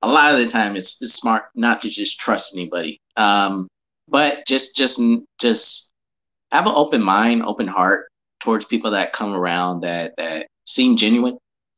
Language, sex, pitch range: English, male, 95-120 Hz